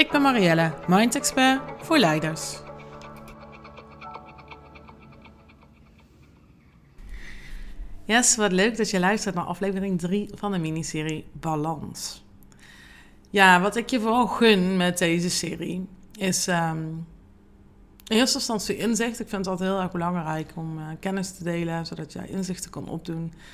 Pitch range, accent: 155-195 Hz, Dutch